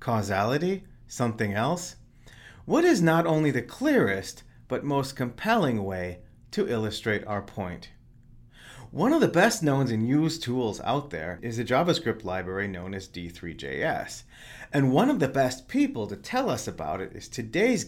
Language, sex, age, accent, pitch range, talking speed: English, male, 30-49, American, 100-140 Hz, 160 wpm